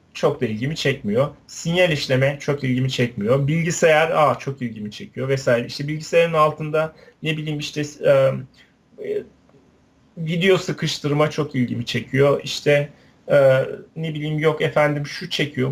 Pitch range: 135-160 Hz